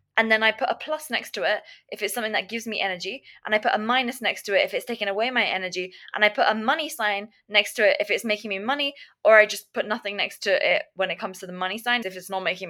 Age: 20-39